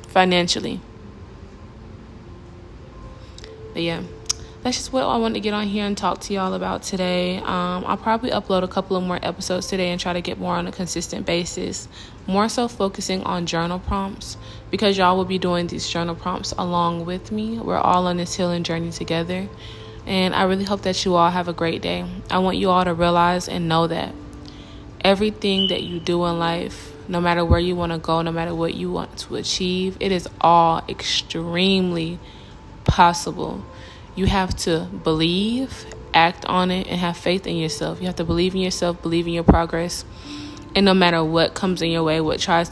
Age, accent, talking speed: 20-39, American, 190 wpm